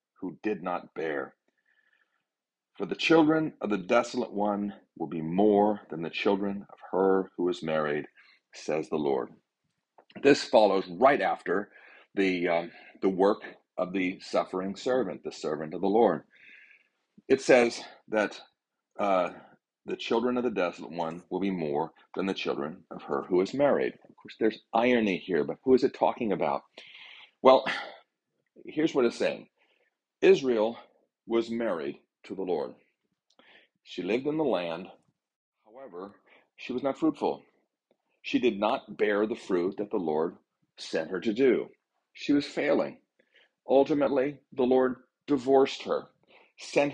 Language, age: English, 40-59